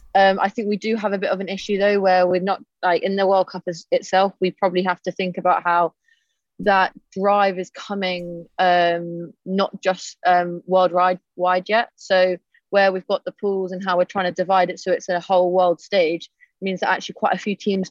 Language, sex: English, female